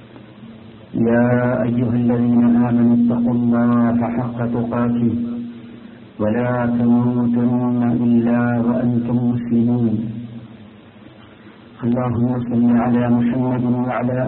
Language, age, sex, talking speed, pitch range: Malayalam, 50-69, male, 75 wpm, 115-125 Hz